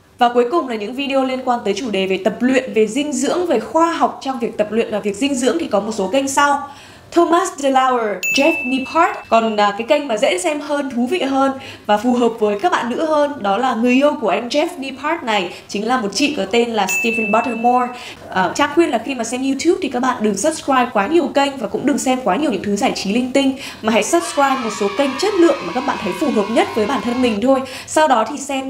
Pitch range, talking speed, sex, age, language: 220-290 Hz, 265 wpm, female, 10-29, Vietnamese